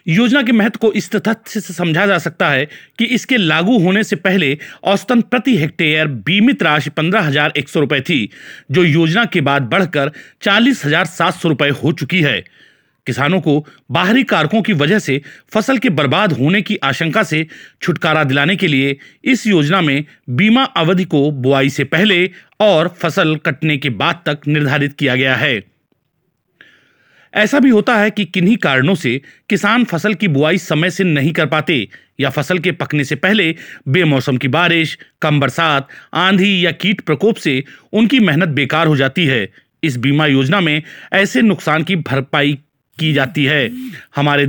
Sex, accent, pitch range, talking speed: male, native, 145-195 Hz, 165 wpm